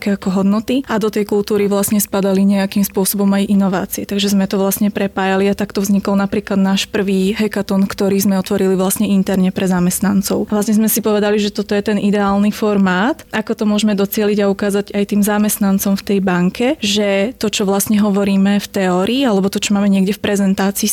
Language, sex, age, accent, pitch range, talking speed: Czech, female, 20-39, native, 195-210 Hz, 195 wpm